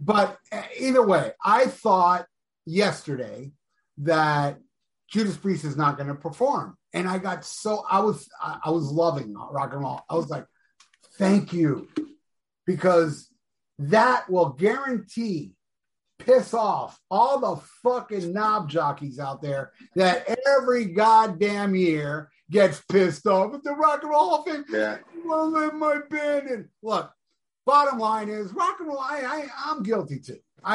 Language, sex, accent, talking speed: English, male, American, 145 wpm